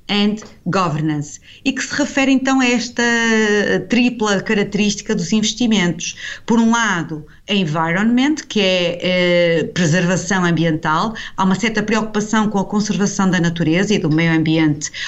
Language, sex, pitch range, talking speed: English, female, 175-220 Hz, 145 wpm